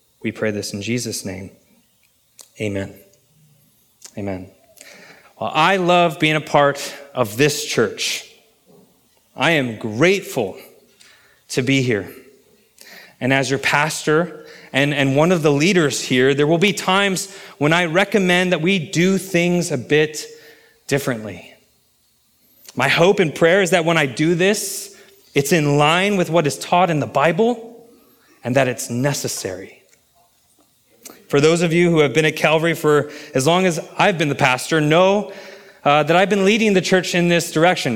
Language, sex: English, male